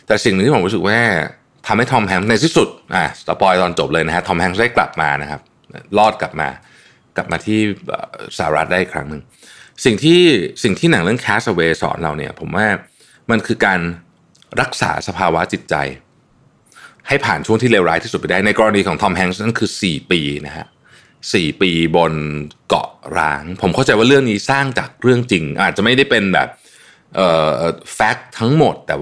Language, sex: Thai, male